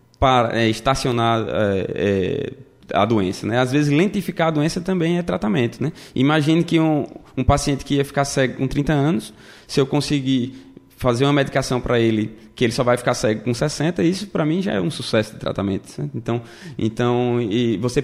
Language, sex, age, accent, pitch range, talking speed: Portuguese, male, 20-39, Brazilian, 120-145 Hz, 180 wpm